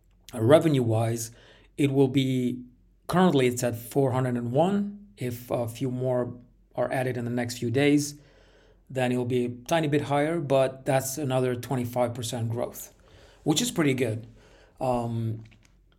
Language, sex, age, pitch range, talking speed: English, male, 40-59, 120-140 Hz, 145 wpm